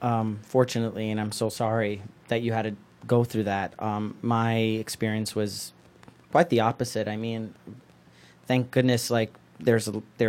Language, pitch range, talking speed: English, 105-125 Hz, 165 wpm